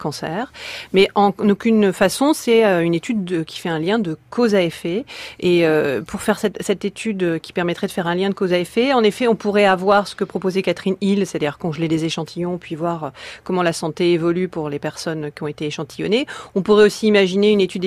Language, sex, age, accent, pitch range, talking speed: French, female, 40-59, French, 175-215 Hz, 215 wpm